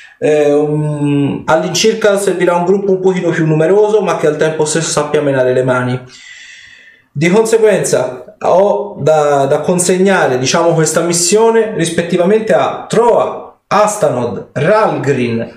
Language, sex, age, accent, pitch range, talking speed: Italian, male, 40-59, native, 145-200 Hz, 125 wpm